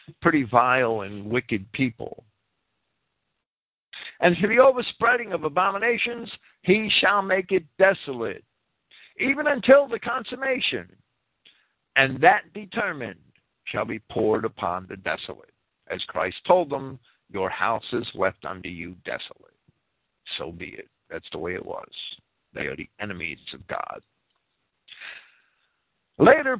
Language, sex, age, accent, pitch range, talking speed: English, male, 50-69, American, 145-235 Hz, 125 wpm